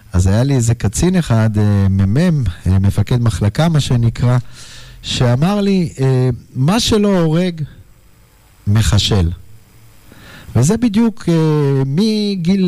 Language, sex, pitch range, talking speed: Hebrew, male, 110-160 Hz, 95 wpm